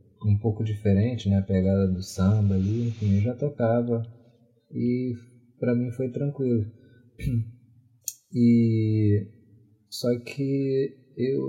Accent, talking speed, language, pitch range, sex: Brazilian, 115 wpm, English, 105-120 Hz, male